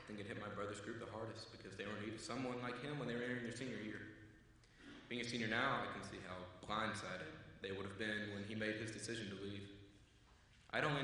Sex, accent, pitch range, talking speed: male, American, 100-125 Hz, 240 wpm